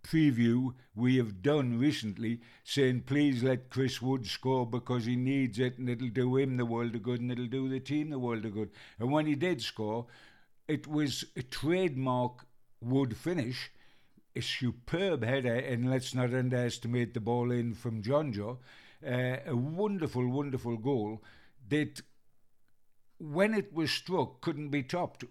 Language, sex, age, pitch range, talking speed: English, male, 60-79, 120-140 Hz, 165 wpm